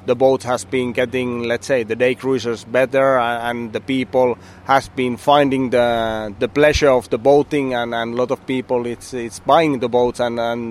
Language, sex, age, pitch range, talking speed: Hindi, male, 30-49, 125-145 Hz, 205 wpm